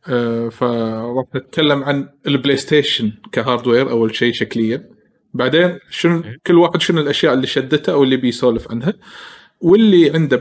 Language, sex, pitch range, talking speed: Arabic, male, 115-140 Hz, 140 wpm